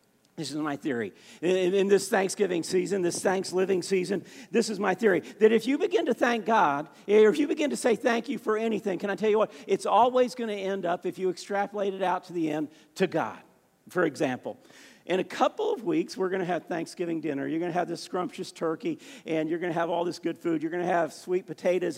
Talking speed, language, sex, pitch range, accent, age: 245 wpm, English, male, 175-250 Hz, American, 50-69